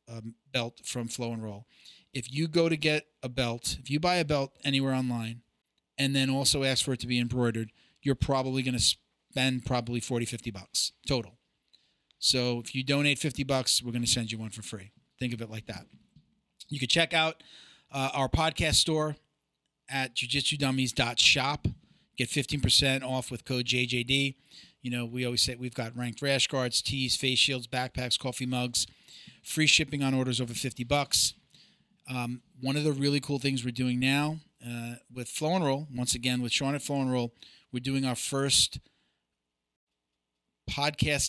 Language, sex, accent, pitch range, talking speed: English, male, American, 120-140 Hz, 185 wpm